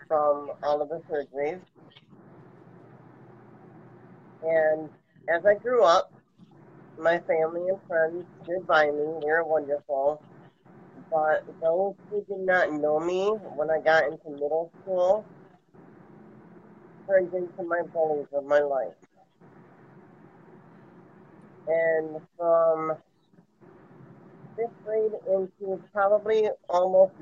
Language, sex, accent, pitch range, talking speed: English, male, American, 160-185 Hz, 105 wpm